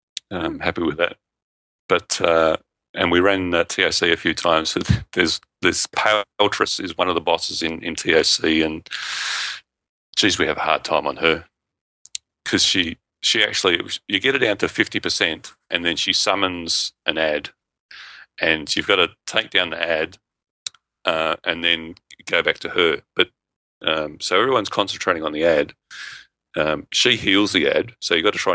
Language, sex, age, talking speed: English, male, 40-59, 180 wpm